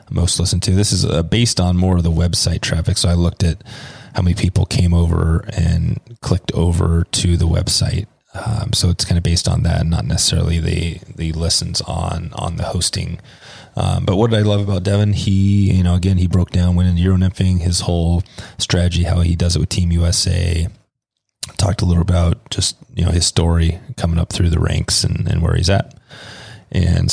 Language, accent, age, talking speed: English, American, 30-49, 210 wpm